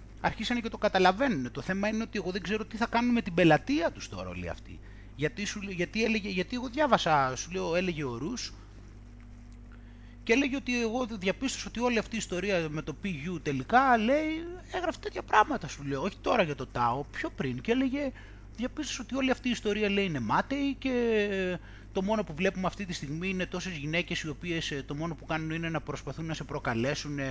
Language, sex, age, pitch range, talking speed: Greek, male, 30-49, 125-210 Hz, 205 wpm